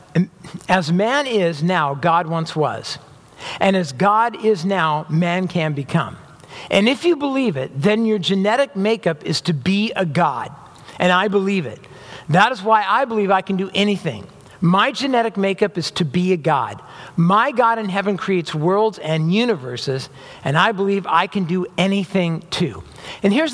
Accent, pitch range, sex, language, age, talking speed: American, 180-235 Hz, male, English, 50-69, 175 wpm